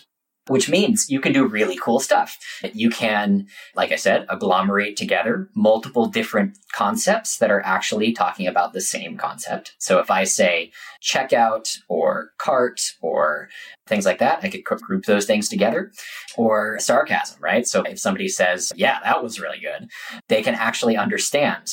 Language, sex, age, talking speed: English, male, 30-49, 165 wpm